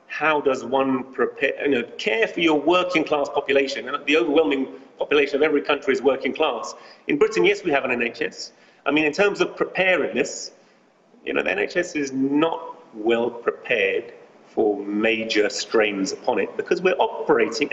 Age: 30-49